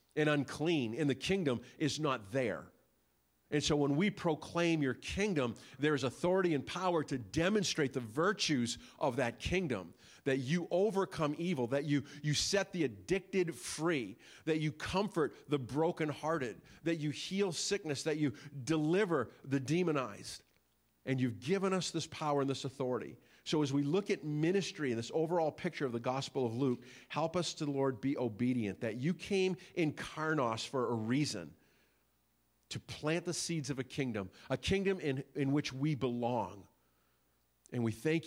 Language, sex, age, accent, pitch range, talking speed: English, male, 50-69, American, 120-155 Hz, 170 wpm